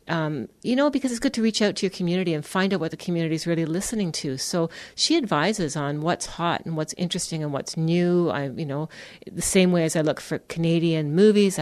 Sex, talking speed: female, 240 wpm